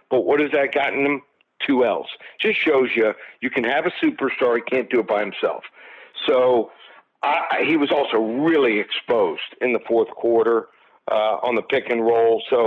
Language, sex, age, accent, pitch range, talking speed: English, male, 60-79, American, 120-185 Hz, 190 wpm